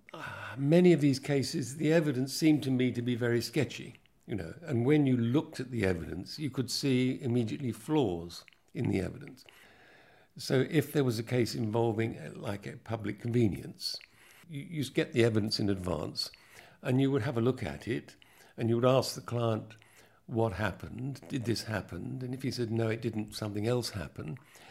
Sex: male